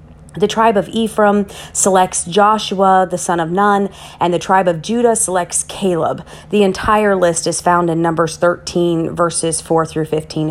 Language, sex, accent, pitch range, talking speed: English, female, American, 175-235 Hz, 165 wpm